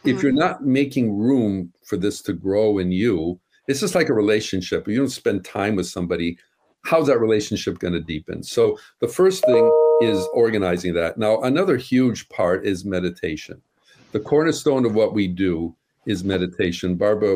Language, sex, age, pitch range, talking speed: English, male, 50-69, 95-115 Hz, 175 wpm